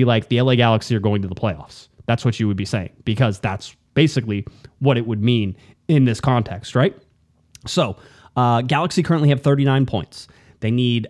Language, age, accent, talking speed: English, 20-39, American, 190 wpm